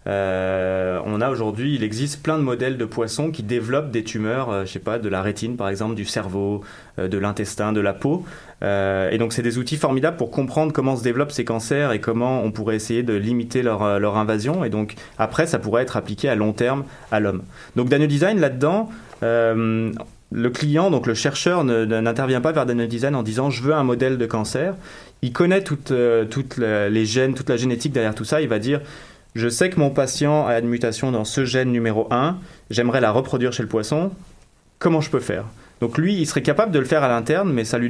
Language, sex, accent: French, male, French